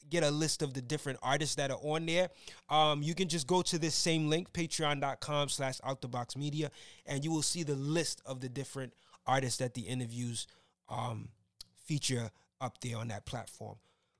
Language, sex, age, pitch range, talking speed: English, male, 20-39, 140-165 Hz, 175 wpm